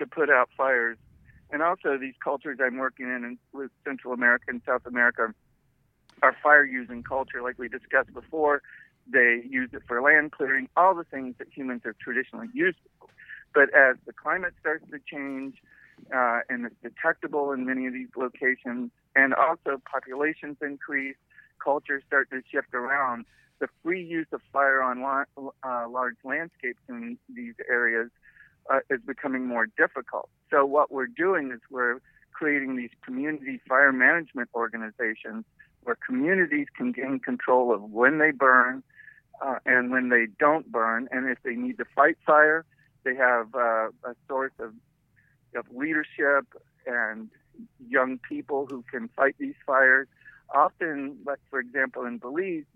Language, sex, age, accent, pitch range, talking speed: English, male, 50-69, American, 125-145 Hz, 155 wpm